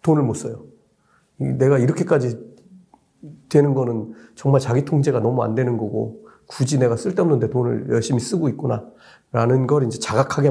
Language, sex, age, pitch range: Korean, male, 40-59, 120-165 Hz